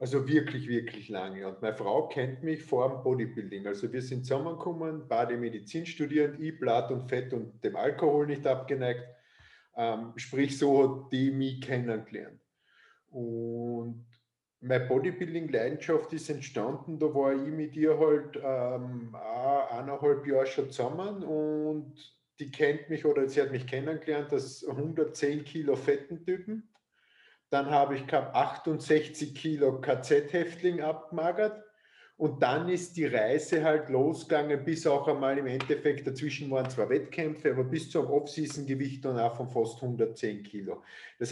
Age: 50-69